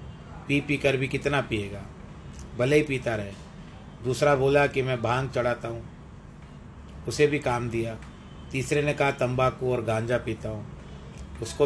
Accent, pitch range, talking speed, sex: native, 110-135 Hz, 155 wpm, male